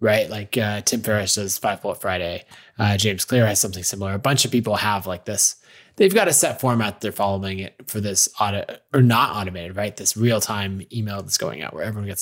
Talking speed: 225 wpm